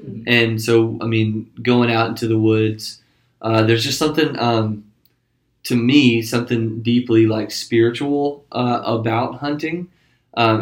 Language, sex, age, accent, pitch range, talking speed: English, male, 20-39, American, 110-130 Hz, 135 wpm